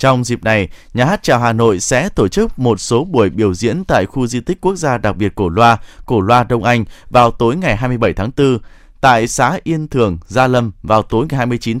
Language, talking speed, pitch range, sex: Vietnamese, 235 wpm, 110-145 Hz, male